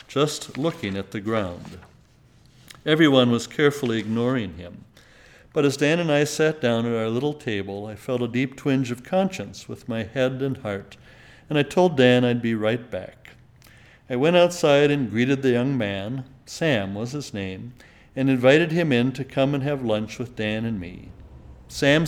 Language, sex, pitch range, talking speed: English, male, 115-145 Hz, 180 wpm